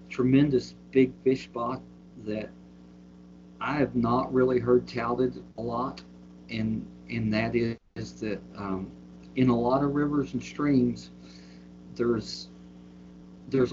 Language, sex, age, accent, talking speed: English, male, 50-69, American, 125 wpm